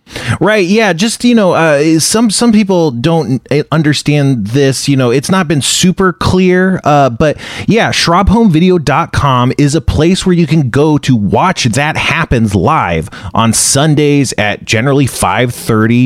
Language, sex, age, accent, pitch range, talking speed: English, male, 30-49, American, 110-165 Hz, 155 wpm